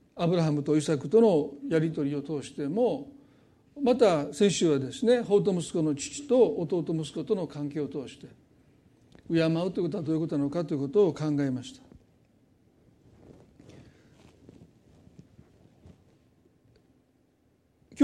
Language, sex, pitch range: Japanese, male, 150-205 Hz